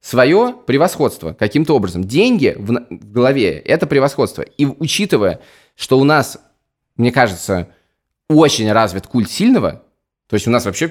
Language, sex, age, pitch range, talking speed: Russian, male, 20-39, 110-155 Hz, 140 wpm